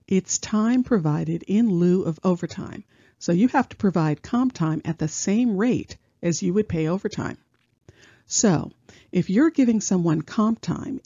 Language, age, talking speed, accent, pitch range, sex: English, 50-69, 165 wpm, American, 165-225 Hz, female